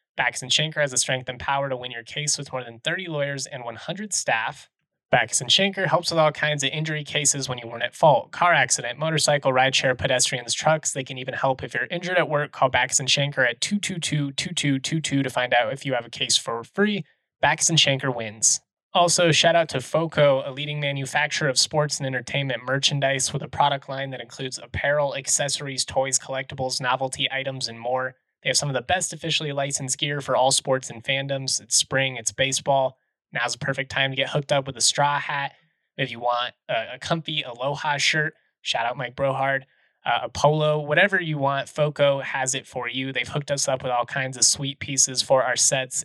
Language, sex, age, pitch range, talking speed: English, male, 20-39, 130-150 Hz, 210 wpm